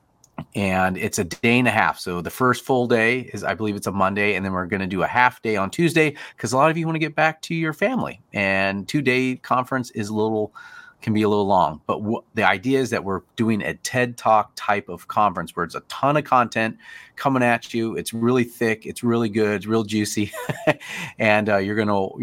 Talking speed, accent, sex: 240 wpm, American, male